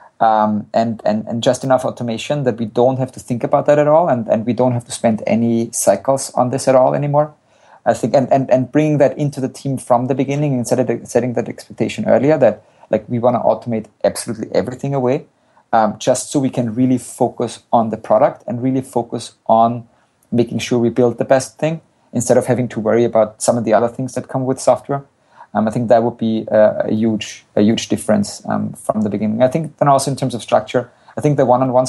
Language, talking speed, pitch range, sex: English, 235 wpm, 115-130 Hz, male